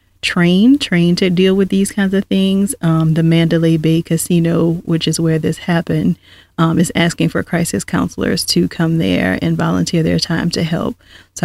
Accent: American